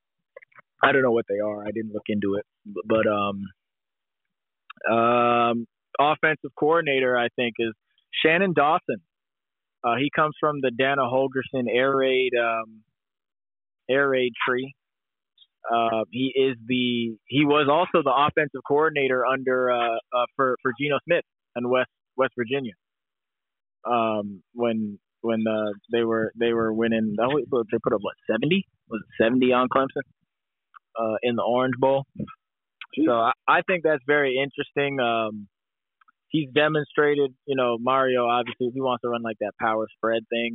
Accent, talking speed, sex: American, 150 wpm, male